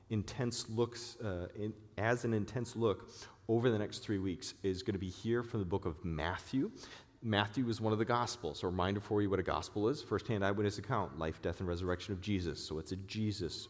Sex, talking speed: male, 225 wpm